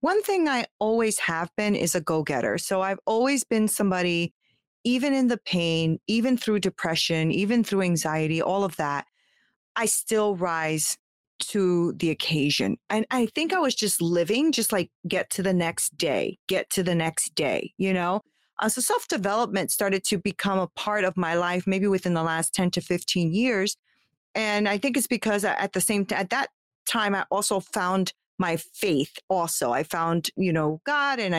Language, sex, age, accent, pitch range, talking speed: English, female, 30-49, American, 170-215 Hz, 185 wpm